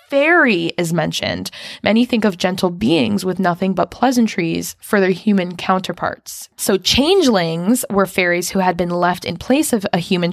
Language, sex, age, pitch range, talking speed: English, female, 10-29, 175-235 Hz, 170 wpm